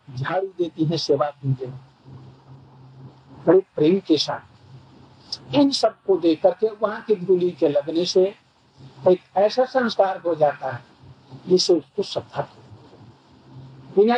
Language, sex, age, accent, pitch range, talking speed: Hindi, male, 60-79, native, 135-225 Hz, 100 wpm